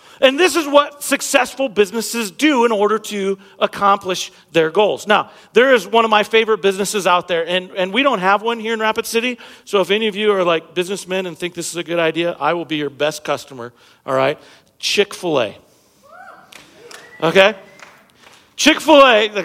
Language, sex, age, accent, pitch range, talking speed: English, male, 40-59, American, 185-260 Hz, 185 wpm